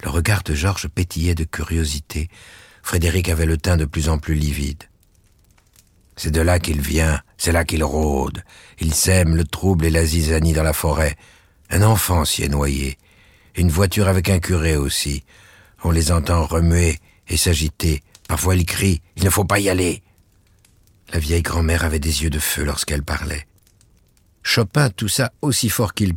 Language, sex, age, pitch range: French, male, 60-79, 80-110 Hz